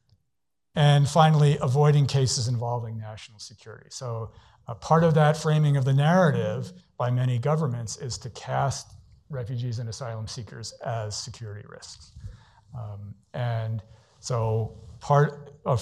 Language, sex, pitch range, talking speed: English, male, 110-135 Hz, 130 wpm